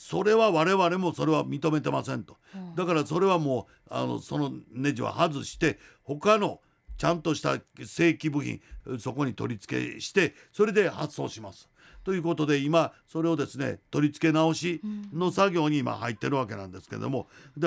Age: 50-69